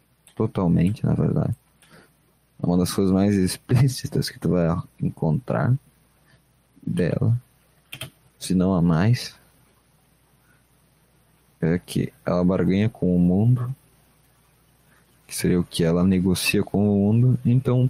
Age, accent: 20-39, Brazilian